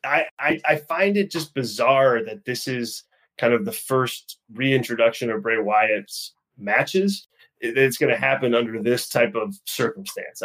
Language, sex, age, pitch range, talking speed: English, male, 20-39, 120-155 Hz, 155 wpm